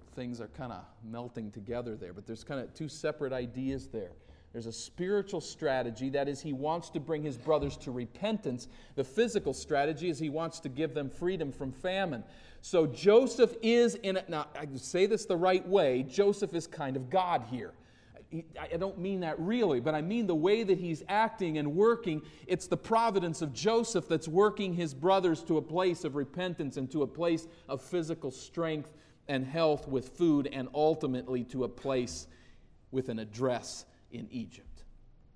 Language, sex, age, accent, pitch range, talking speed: English, male, 40-59, American, 120-165 Hz, 185 wpm